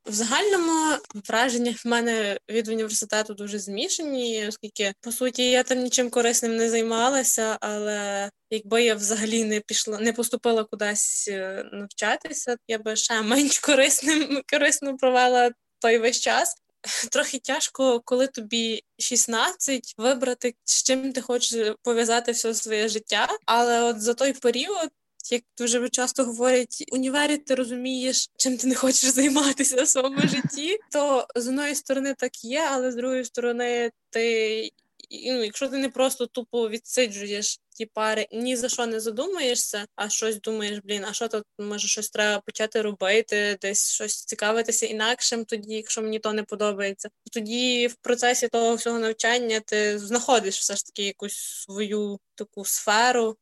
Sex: female